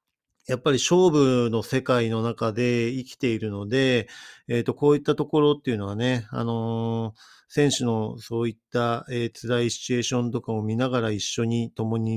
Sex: male